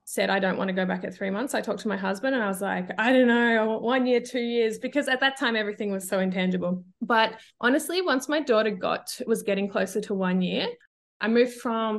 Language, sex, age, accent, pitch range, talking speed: English, female, 20-39, Australian, 195-245 Hz, 245 wpm